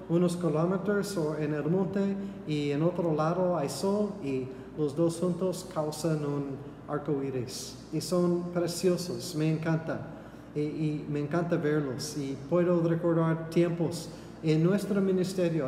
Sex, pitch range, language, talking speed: male, 145-175 Hz, Spanish, 140 wpm